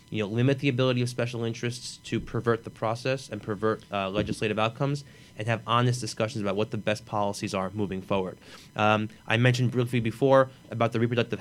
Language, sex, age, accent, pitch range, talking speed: English, male, 20-39, American, 105-125 Hz, 195 wpm